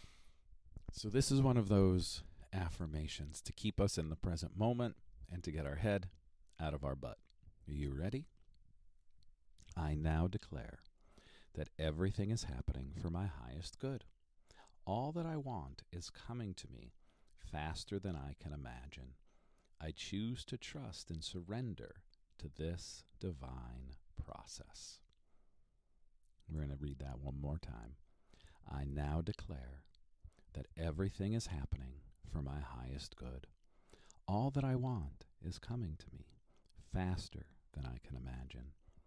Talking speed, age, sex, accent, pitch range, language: 140 wpm, 40-59, male, American, 75-100 Hz, English